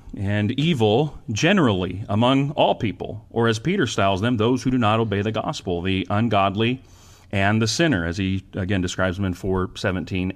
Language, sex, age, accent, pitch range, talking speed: English, male, 40-59, American, 95-130 Hz, 185 wpm